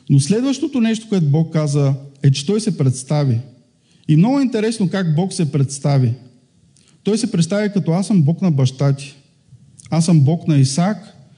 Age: 50-69